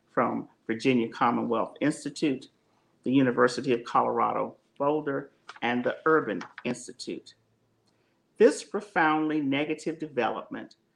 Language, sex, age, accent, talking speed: English, male, 50-69, American, 95 wpm